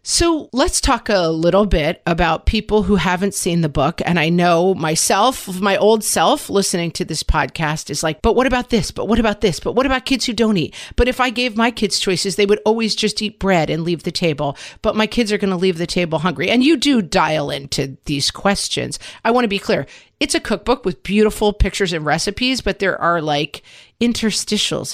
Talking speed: 225 wpm